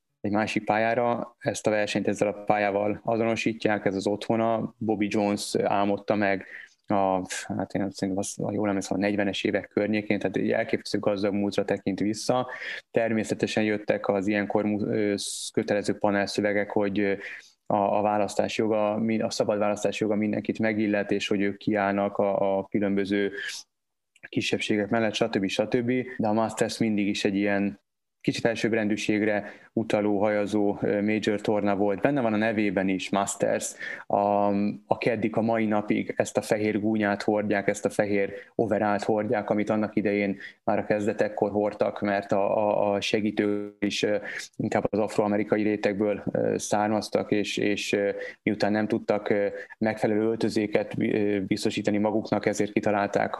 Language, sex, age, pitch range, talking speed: Hungarian, male, 20-39, 100-110 Hz, 140 wpm